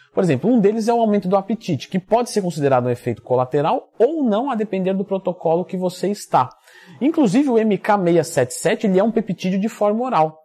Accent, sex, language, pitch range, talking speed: Brazilian, male, Portuguese, 125-195 Hz, 195 wpm